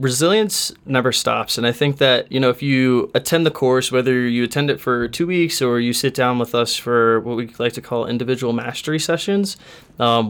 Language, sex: English, male